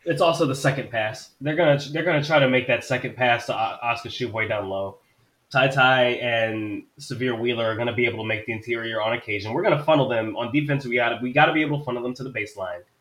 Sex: male